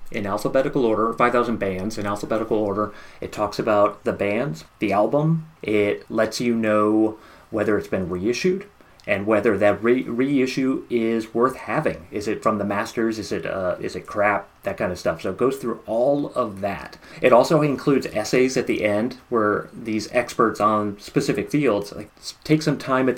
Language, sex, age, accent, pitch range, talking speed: English, male, 30-49, American, 105-125 Hz, 180 wpm